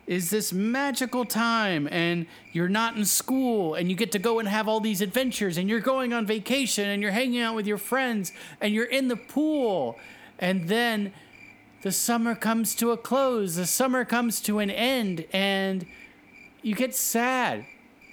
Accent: American